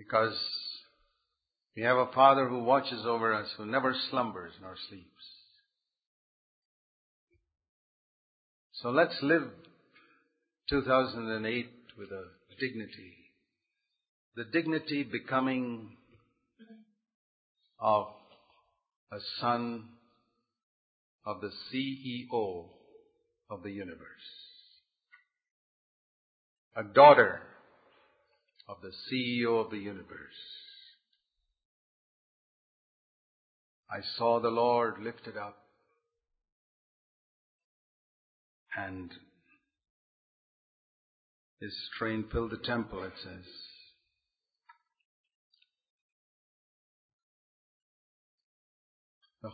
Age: 50-69